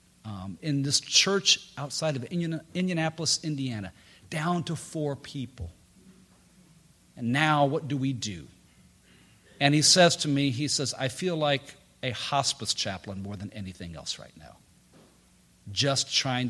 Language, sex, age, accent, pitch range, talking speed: English, male, 50-69, American, 110-170 Hz, 140 wpm